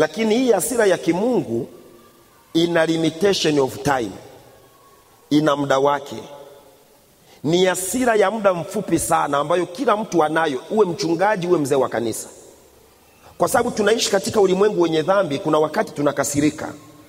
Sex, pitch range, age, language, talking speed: male, 170-280 Hz, 40-59, Swahili, 135 wpm